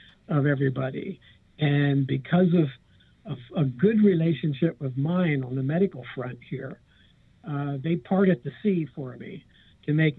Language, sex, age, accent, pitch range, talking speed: English, male, 60-79, American, 140-170 Hz, 145 wpm